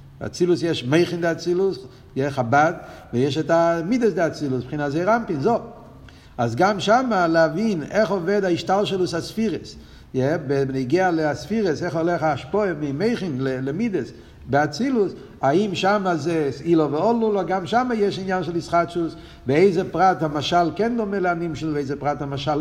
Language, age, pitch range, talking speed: Hebrew, 60-79, 155-205 Hz, 140 wpm